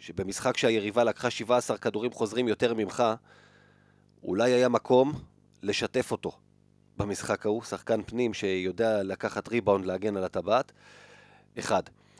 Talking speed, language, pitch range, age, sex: 120 wpm, Hebrew, 105-125 Hz, 40-59, male